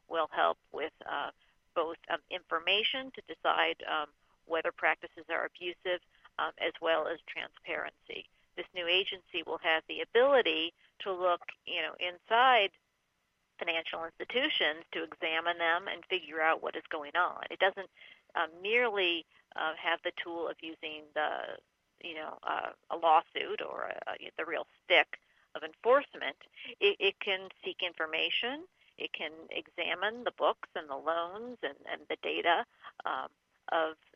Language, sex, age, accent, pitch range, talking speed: English, female, 50-69, American, 165-205 Hz, 150 wpm